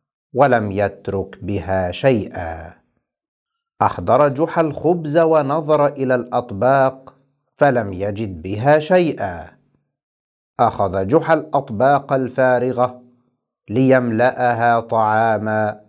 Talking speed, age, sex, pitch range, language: 75 wpm, 50-69, male, 110-150 Hz, Arabic